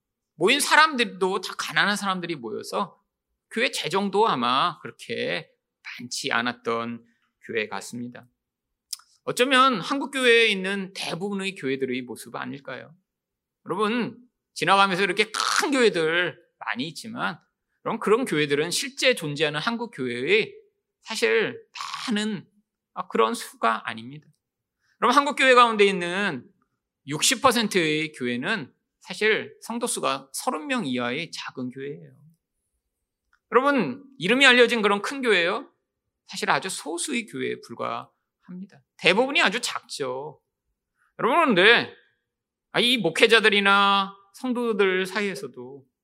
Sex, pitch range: male, 155-250 Hz